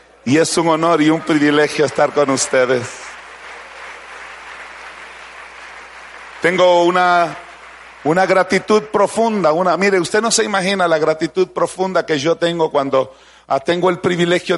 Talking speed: 130 wpm